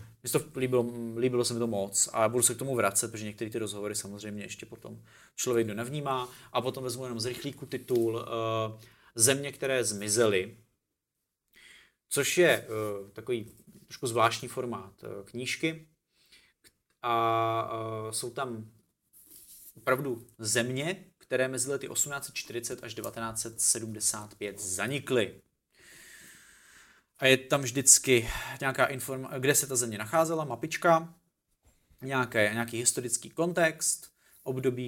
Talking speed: 120 wpm